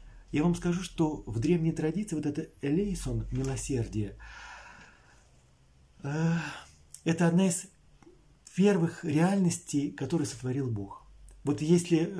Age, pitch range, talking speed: 40-59, 125-165 Hz, 110 wpm